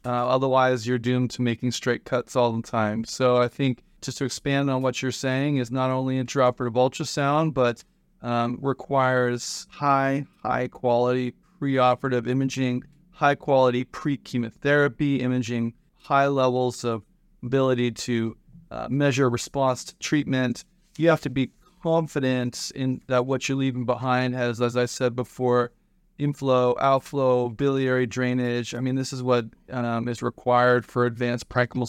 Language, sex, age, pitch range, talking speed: English, male, 30-49, 125-140 Hz, 145 wpm